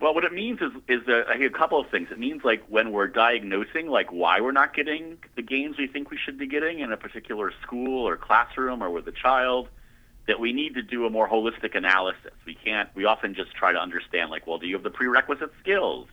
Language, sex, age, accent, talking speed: English, male, 40-59, American, 250 wpm